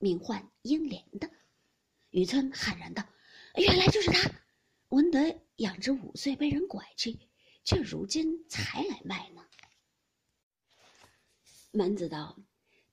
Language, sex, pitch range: Chinese, female, 190-295 Hz